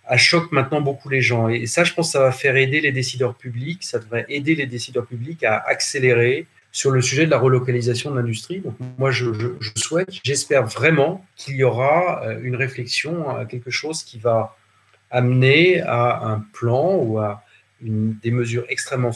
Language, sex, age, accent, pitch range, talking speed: English, male, 40-59, French, 120-150 Hz, 190 wpm